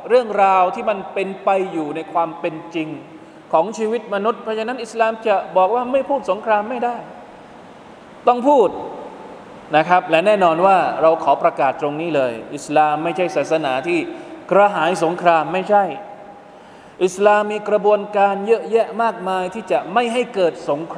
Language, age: Thai, 20-39